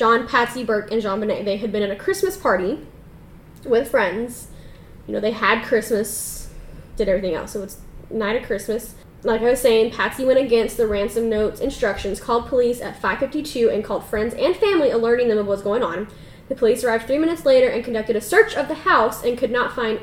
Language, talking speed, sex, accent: English, 215 wpm, female, American